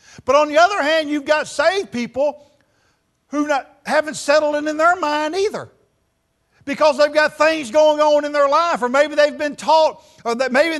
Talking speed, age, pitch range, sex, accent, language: 185 wpm, 50-69, 255-315 Hz, male, American, English